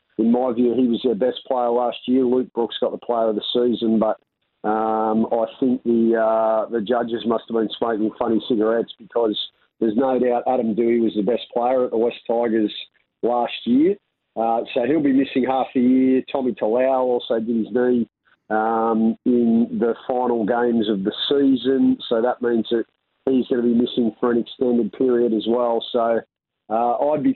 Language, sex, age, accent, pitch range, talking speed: English, male, 40-59, Australian, 115-130 Hz, 195 wpm